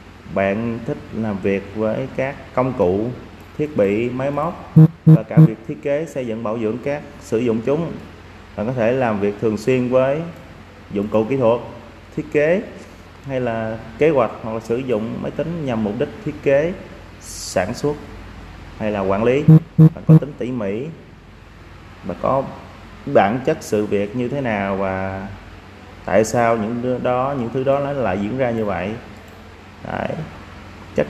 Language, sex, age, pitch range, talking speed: Vietnamese, male, 20-39, 100-130 Hz, 170 wpm